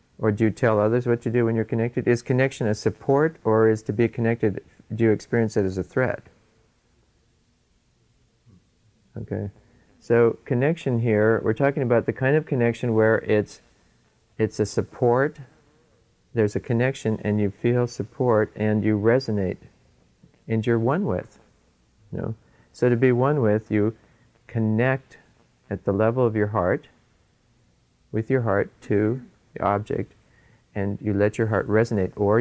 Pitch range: 100-120 Hz